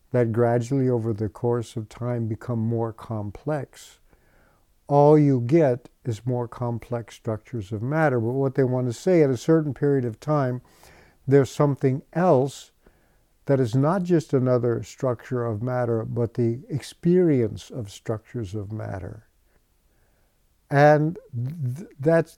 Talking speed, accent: 135 wpm, American